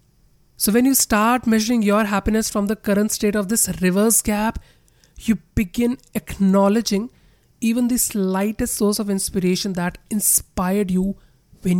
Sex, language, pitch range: male, English, 180-220 Hz